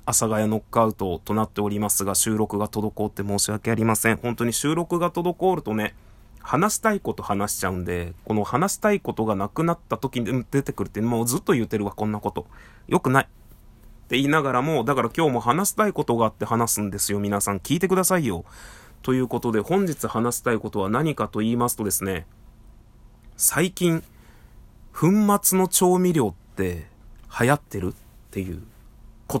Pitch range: 105-155 Hz